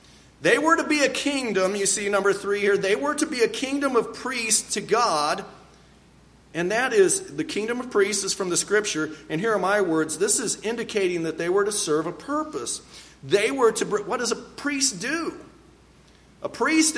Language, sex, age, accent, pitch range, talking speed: English, male, 40-59, American, 190-255 Hz, 200 wpm